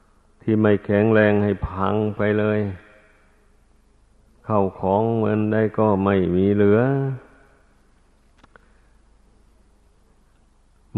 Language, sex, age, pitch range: Thai, male, 50-69, 100-110 Hz